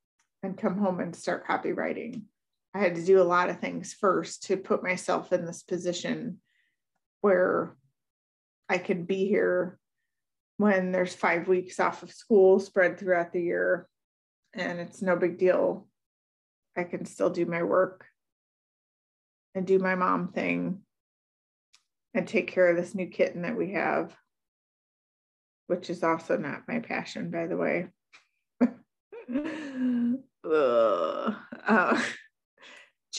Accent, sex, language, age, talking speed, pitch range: American, female, English, 30-49, 130 wpm, 175-200 Hz